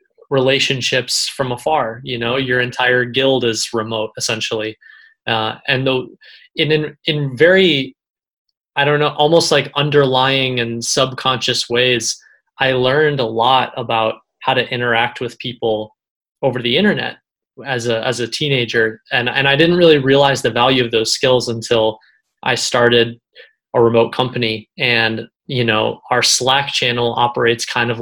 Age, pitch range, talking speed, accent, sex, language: 20-39, 115-135 Hz, 150 wpm, American, male, English